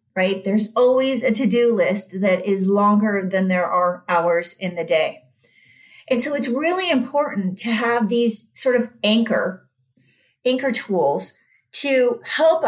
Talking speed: 145 wpm